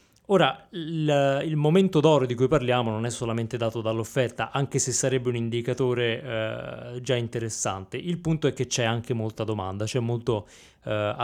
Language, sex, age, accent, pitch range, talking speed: Italian, male, 20-39, native, 115-150 Hz, 165 wpm